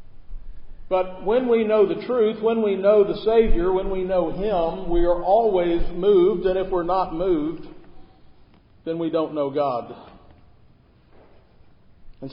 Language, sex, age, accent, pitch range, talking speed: English, male, 50-69, American, 165-215 Hz, 145 wpm